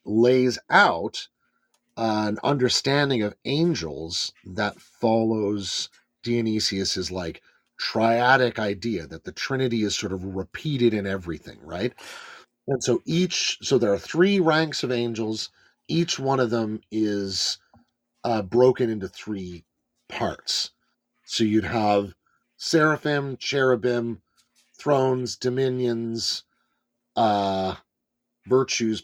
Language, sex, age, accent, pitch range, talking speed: English, male, 40-59, American, 105-135 Hz, 105 wpm